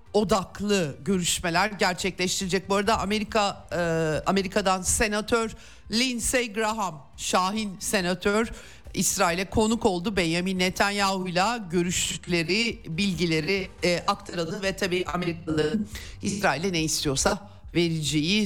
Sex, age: male, 50-69